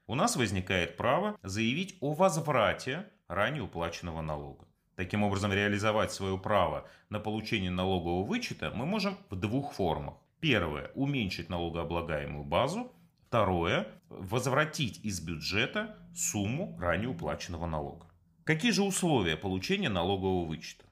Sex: male